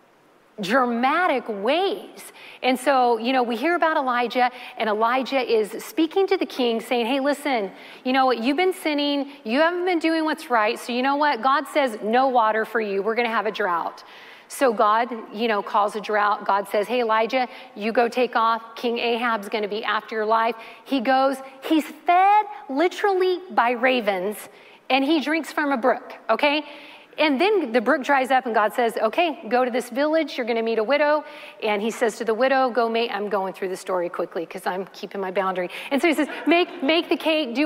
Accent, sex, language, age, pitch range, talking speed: American, female, English, 40-59, 220-295 Hz, 210 wpm